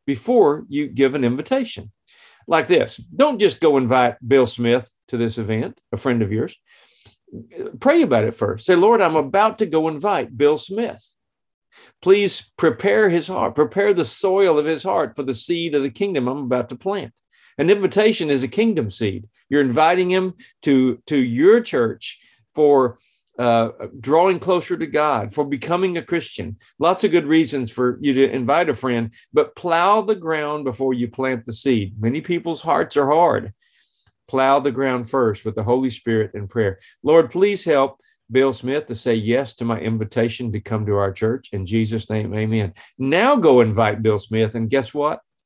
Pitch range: 115-160 Hz